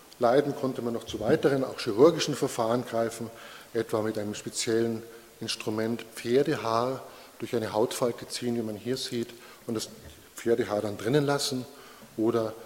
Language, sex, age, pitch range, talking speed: German, male, 20-39, 110-125 Hz, 145 wpm